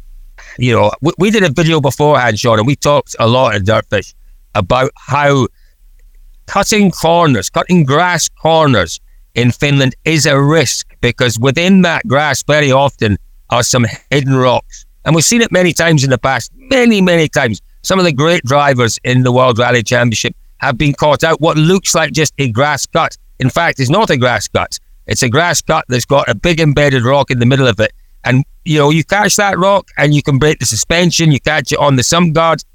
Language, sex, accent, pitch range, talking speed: English, male, British, 115-155 Hz, 205 wpm